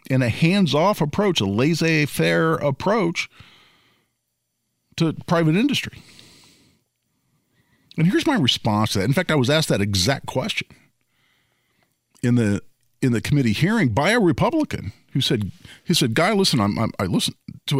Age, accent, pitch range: 50-69, American, 120-160 Hz